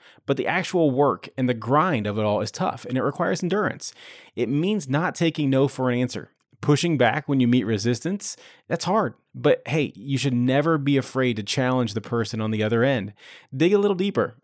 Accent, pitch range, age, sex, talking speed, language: American, 110-155 Hz, 30-49, male, 210 wpm, English